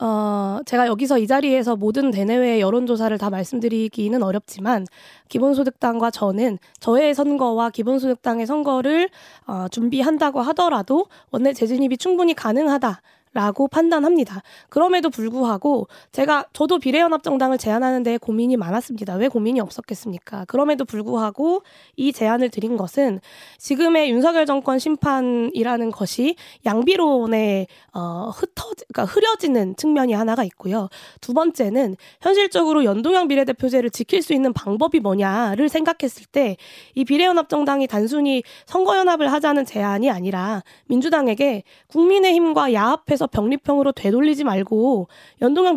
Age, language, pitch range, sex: 20-39, Korean, 225-295 Hz, female